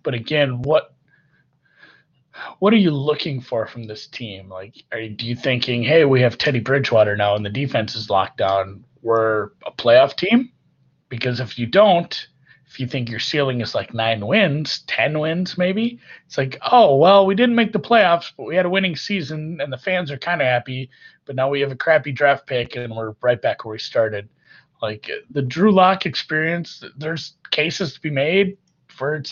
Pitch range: 115-160 Hz